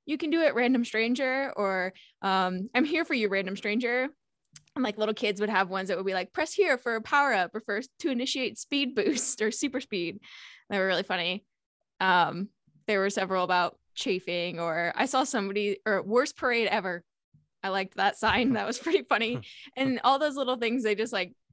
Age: 10-29